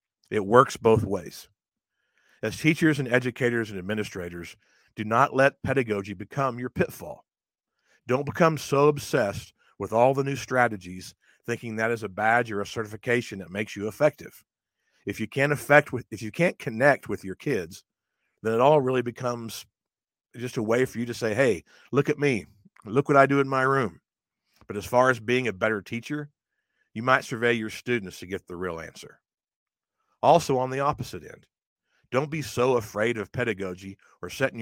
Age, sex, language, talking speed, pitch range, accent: 50-69, male, English, 180 wpm, 105-130 Hz, American